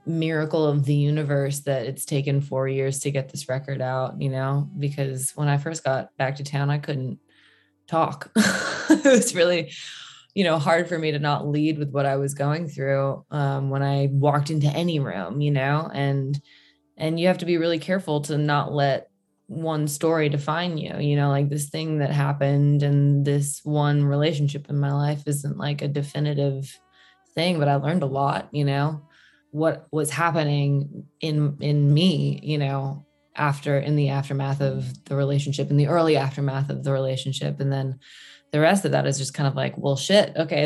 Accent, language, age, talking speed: American, English, 20-39, 190 wpm